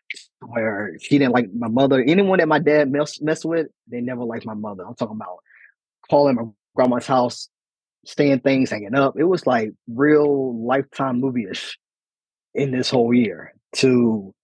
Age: 20-39